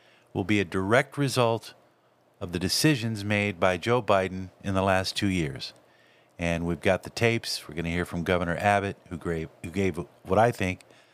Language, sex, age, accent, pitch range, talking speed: English, male, 50-69, American, 95-120 Hz, 190 wpm